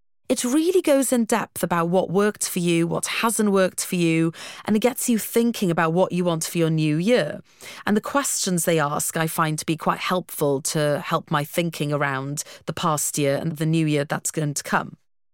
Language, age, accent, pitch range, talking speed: English, 40-59, British, 155-200 Hz, 215 wpm